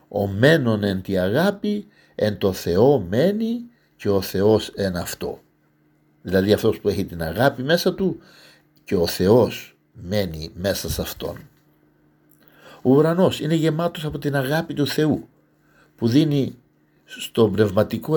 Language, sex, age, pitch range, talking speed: Greek, male, 60-79, 95-145 Hz, 140 wpm